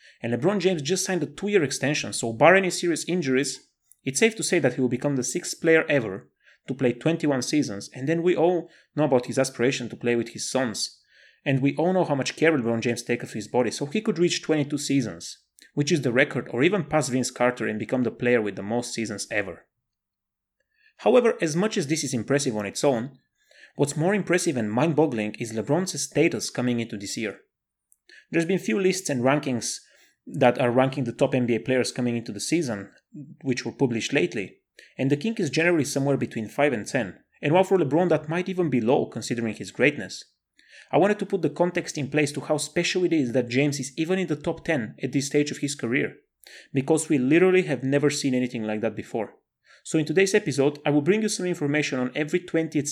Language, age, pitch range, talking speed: English, 30-49, 120-165 Hz, 220 wpm